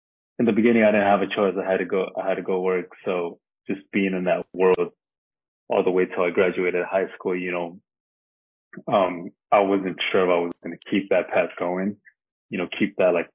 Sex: male